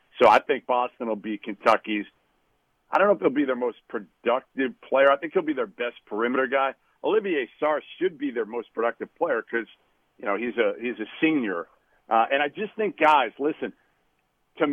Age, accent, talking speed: 50-69, American, 195 wpm